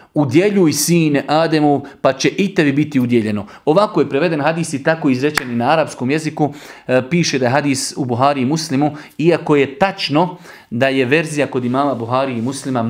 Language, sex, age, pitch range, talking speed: English, male, 40-59, 130-165 Hz, 180 wpm